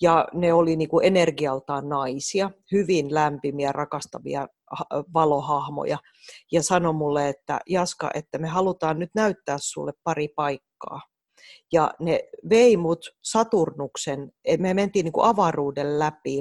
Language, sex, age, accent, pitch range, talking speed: Finnish, female, 30-49, native, 145-180 Hz, 110 wpm